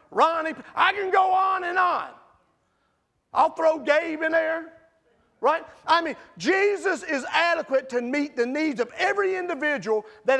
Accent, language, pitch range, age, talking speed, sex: American, English, 200-325 Hz, 40-59, 150 wpm, male